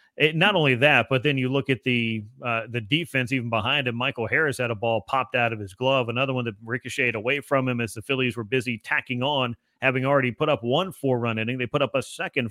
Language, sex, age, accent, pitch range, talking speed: English, male, 30-49, American, 120-150 Hz, 250 wpm